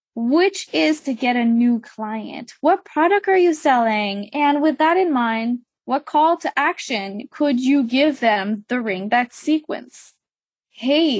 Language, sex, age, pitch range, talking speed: English, female, 10-29, 230-305 Hz, 155 wpm